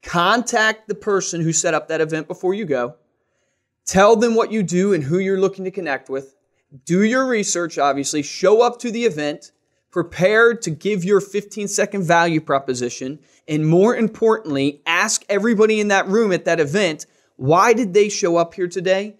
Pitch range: 145-185 Hz